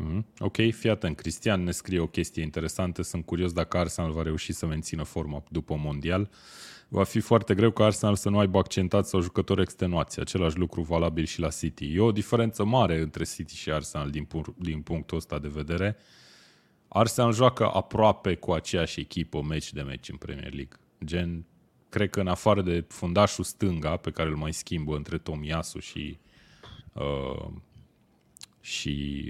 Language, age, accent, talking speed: Romanian, 20-39, native, 165 wpm